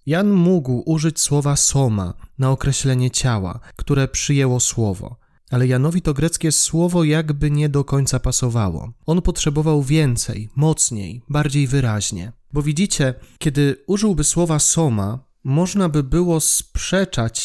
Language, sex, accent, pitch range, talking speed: Polish, male, native, 125-165 Hz, 125 wpm